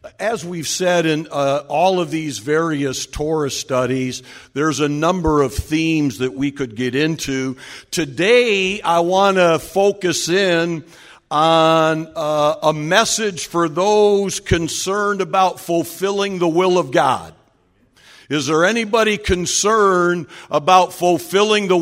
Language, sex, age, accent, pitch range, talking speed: English, male, 50-69, American, 130-175 Hz, 130 wpm